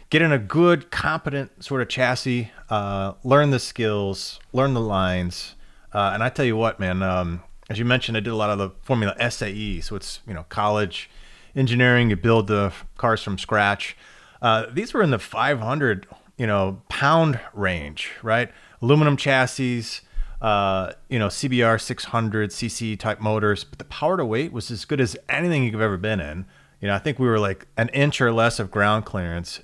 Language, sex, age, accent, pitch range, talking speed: English, male, 30-49, American, 100-130 Hz, 190 wpm